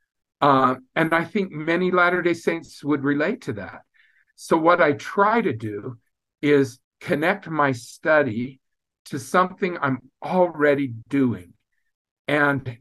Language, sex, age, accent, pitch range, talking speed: English, male, 50-69, American, 130-175 Hz, 125 wpm